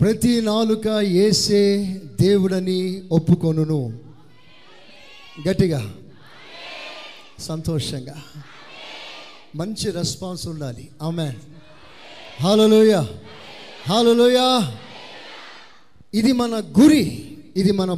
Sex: male